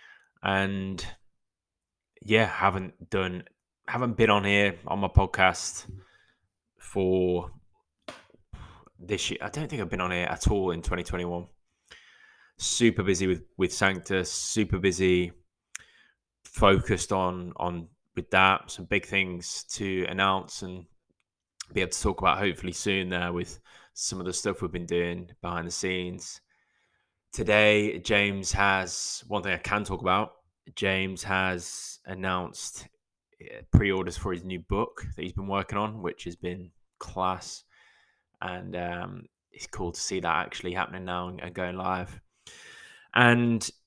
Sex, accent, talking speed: male, British, 140 wpm